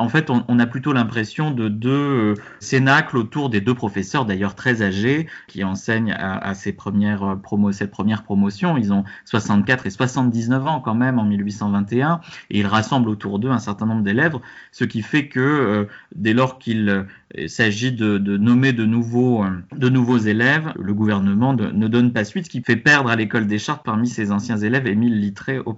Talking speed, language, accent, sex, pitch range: 190 wpm, French, French, male, 105-130 Hz